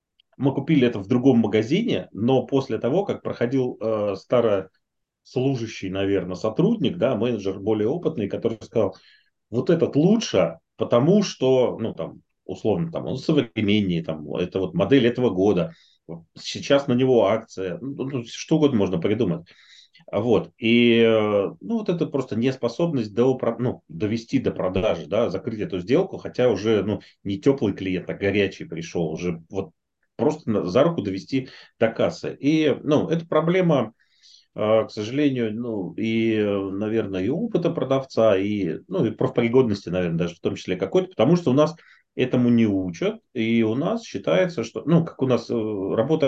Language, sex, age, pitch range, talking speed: Russian, male, 30-49, 100-140 Hz, 155 wpm